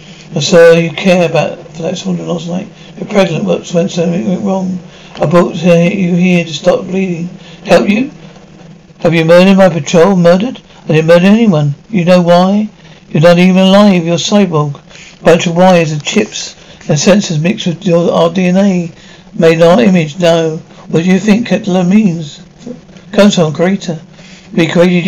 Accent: British